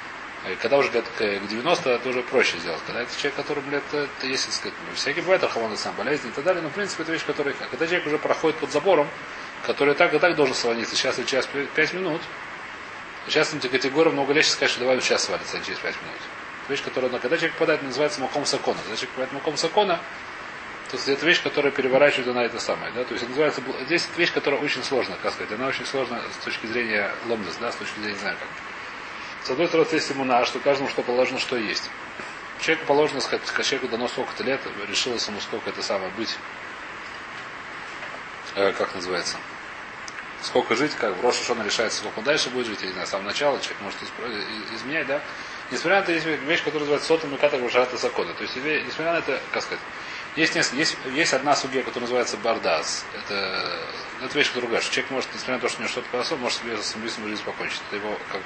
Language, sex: Russian, male